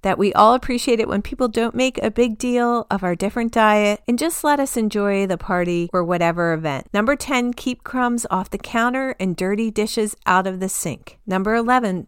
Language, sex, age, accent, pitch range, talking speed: English, female, 40-59, American, 195-245 Hz, 210 wpm